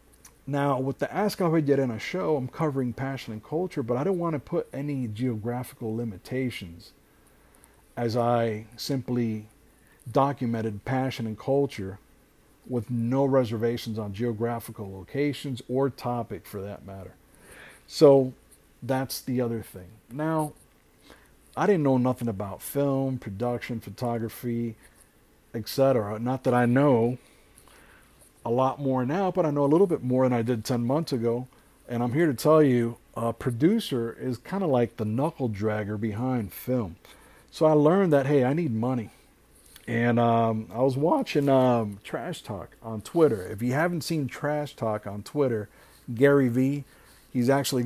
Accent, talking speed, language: American, 155 wpm, English